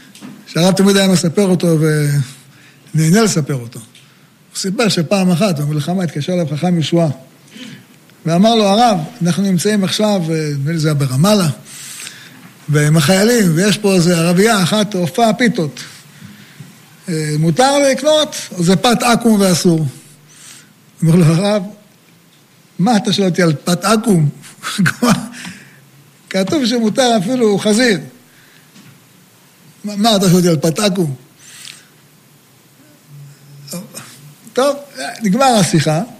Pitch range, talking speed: 160-205 Hz, 110 wpm